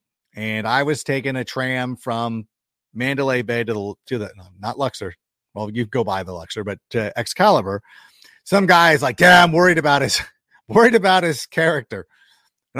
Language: English